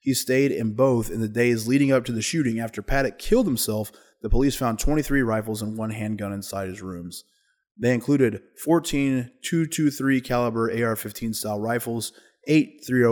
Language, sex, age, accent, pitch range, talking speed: English, male, 20-39, American, 110-130 Hz, 165 wpm